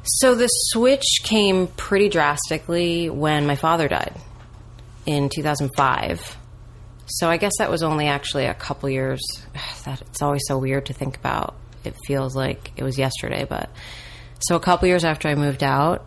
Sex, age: female, 30-49